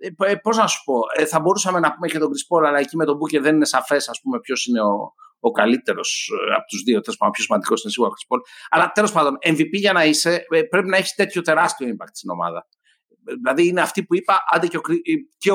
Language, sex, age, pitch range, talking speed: Greek, male, 60-79, 175-250 Hz, 230 wpm